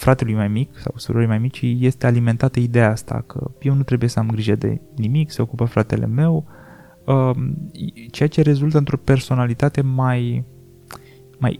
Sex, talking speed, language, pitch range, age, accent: male, 160 wpm, Romanian, 110-140 Hz, 20-39, native